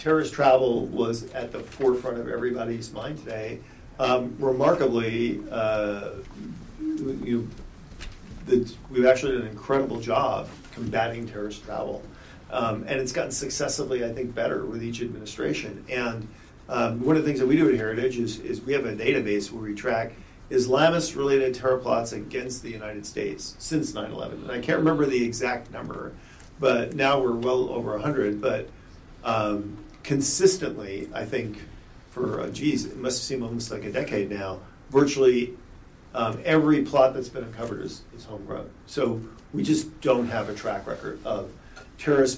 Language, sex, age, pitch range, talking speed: English, male, 40-59, 115-135 Hz, 160 wpm